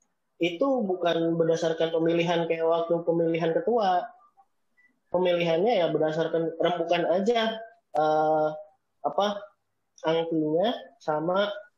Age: 20-39